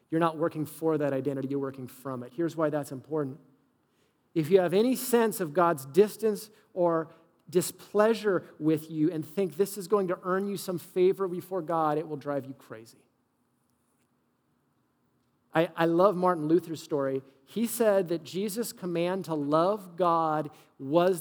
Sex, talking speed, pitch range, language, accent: male, 165 wpm, 145-195 Hz, English, American